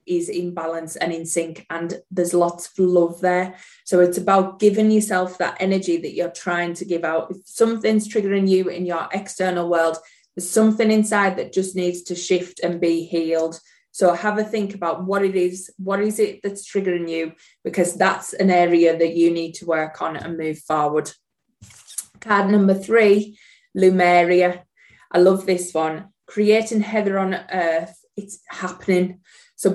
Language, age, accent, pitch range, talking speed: English, 20-39, British, 175-200 Hz, 175 wpm